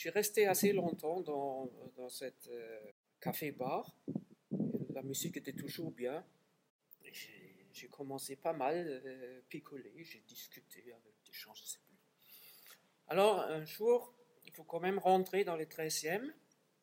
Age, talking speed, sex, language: 50-69, 145 wpm, male, French